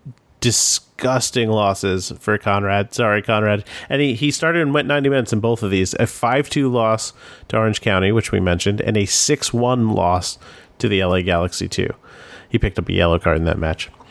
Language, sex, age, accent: English, male, 30-49, American